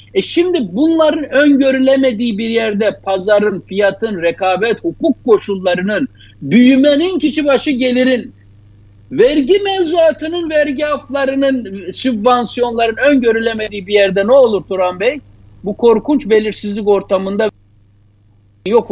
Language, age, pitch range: Turkish, 60-79, 185-275 Hz